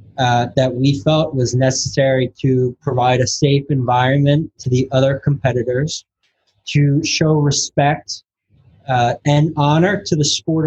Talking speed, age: 130 wpm, 20-39